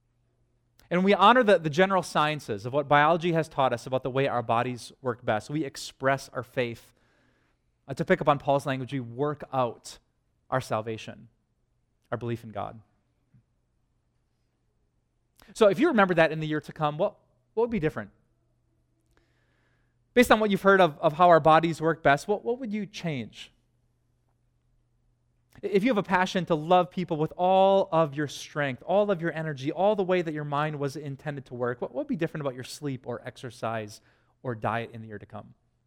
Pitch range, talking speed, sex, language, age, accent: 120-170 Hz, 190 wpm, male, English, 30-49, American